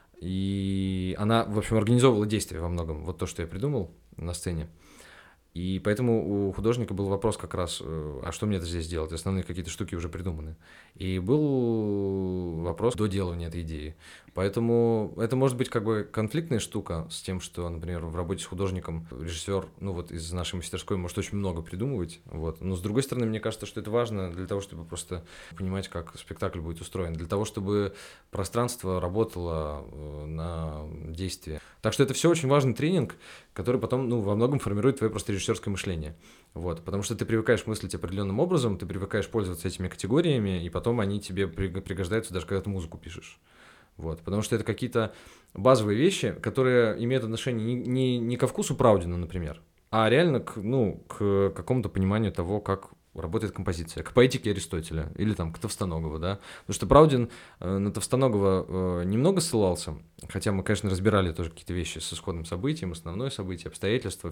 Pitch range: 85-110 Hz